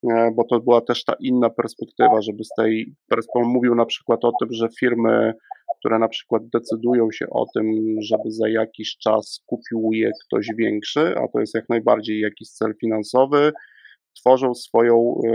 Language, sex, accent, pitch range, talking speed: Polish, male, native, 115-130 Hz, 170 wpm